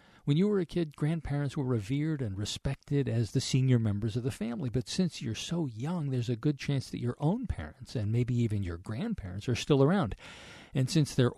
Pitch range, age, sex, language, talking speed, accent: 115-150 Hz, 50-69, male, English, 215 wpm, American